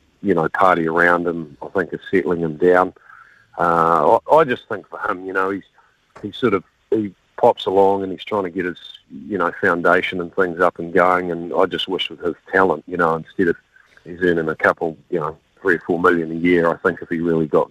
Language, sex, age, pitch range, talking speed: English, male, 50-69, 80-90 Hz, 235 wpm